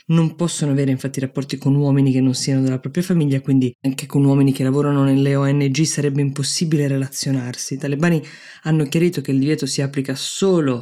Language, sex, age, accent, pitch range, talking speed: Italian, female, 20-39, native, 135-150 Hz, 190 wpm